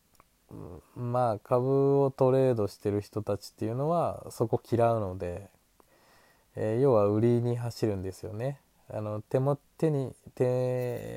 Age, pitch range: 20-39, 110-140 Hz